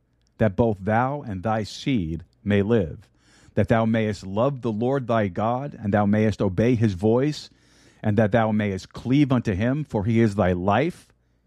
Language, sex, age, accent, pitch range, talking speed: English, male, 50-69, American, 95-125 Hz, 180 wpm